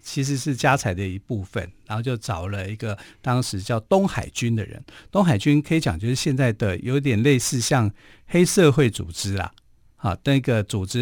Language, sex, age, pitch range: Chinese, male, 50-69, 105-140 Hz